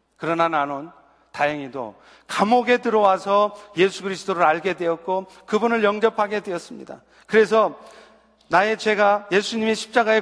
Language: Korean